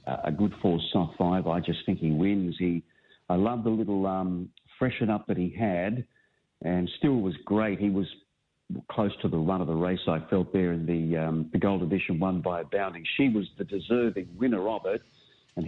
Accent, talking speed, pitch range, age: Australian, 210 wpm, 90-115 Hz, 50-69